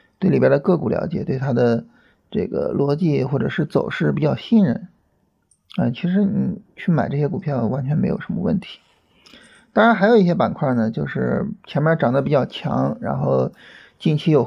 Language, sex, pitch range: Chinese, male, 130-190 Hz